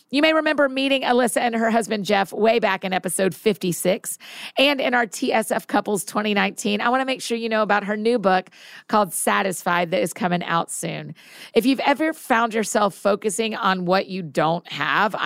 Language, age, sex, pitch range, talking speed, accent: English, 40-59, female, 185-235 Hz, 195 wpm, American